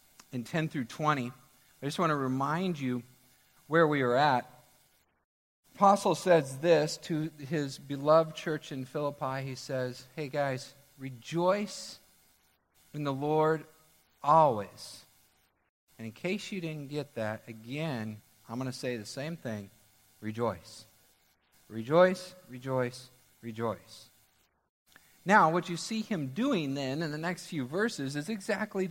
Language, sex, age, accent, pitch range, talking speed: English, male, 50-69, American, 120-180 Hz, 135 wpm